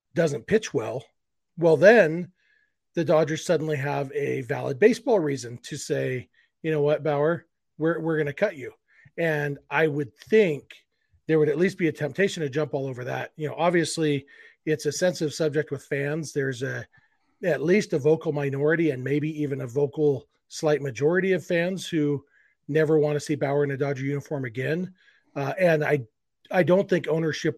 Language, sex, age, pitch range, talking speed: English, male, 40-59, 140-160 Hz, 185 wpm